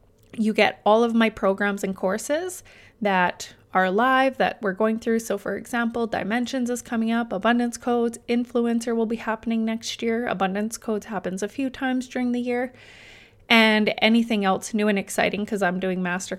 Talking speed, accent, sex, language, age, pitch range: 180 wpm, American, female, English, 20-39, 200-240 Hz